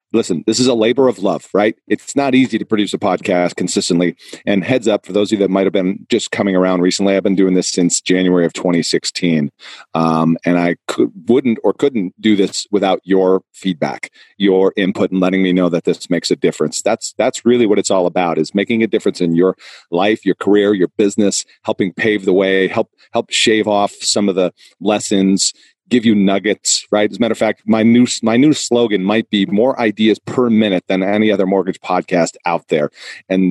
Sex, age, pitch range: male, 40-59, 95-115 Hz